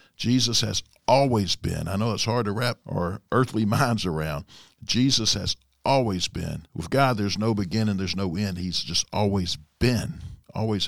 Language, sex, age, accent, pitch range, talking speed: English, male, 60-79, American, 85-110 Hz, 170 wpm